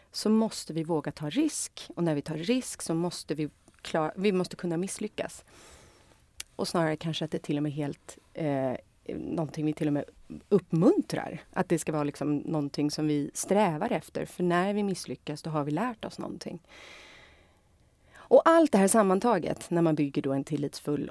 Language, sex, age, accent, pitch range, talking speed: Swedish, female, 30-49, native, 150-200 Hz, 190 wpm